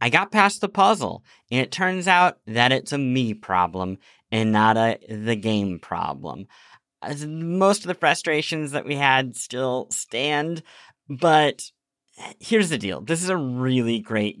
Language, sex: English, male